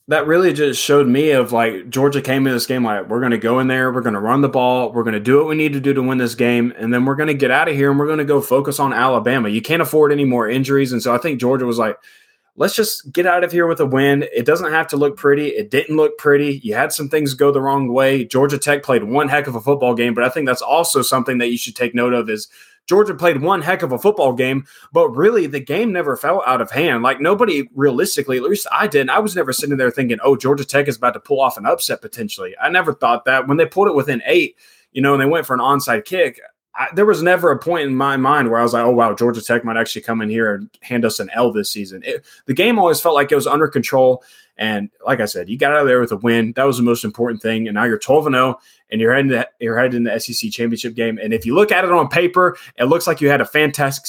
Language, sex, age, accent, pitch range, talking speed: English, male, 20-39, American, 120-150 Hz, 285 wpm